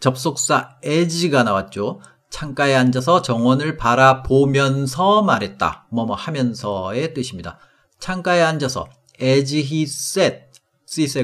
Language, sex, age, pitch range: Korean, male, 40-59, 125-175 Hz